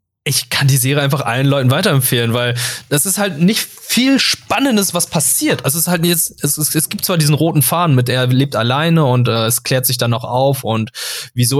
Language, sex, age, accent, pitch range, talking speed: German, male, 20-39, German, 115-145 Hz, 225 wpm